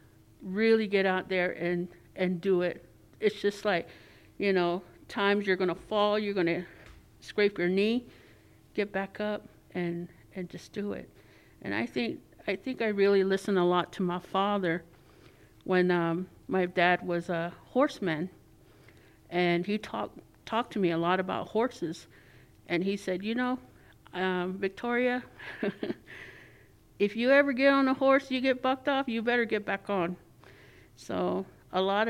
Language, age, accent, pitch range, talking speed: English, 50-69, American, 175-225 Hz, 160 wpm